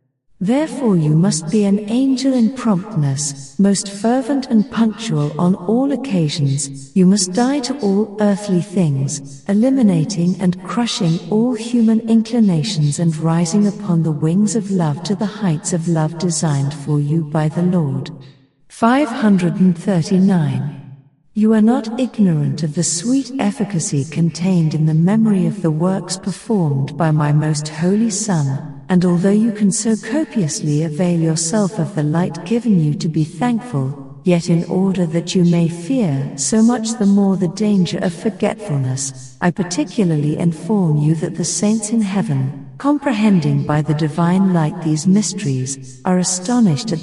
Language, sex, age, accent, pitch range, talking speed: English, female, 50-69, British, 155-210 Hz, 150 wpm